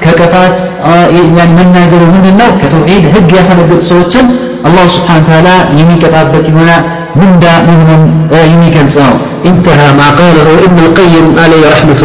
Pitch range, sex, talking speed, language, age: 170-210 Hz, male, 140 wpm, Amharic, 50-69